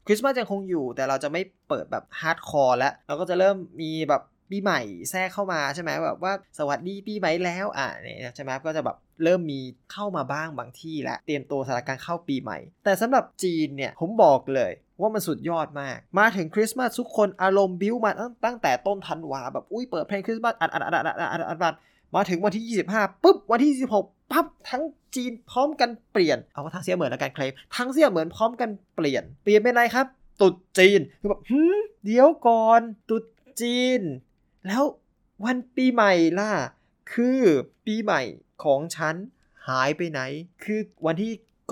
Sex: male